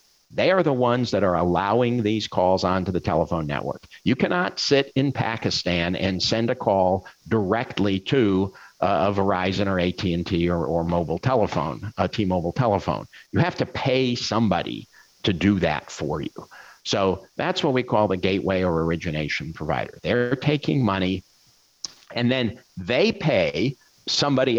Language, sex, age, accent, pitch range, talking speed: English, male, 50-69, American, 90-115 Hz, 155 wpm